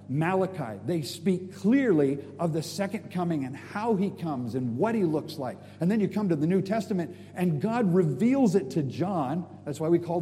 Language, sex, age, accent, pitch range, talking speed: English, male, 50-69, American, 155-210 Hz, 205 wpm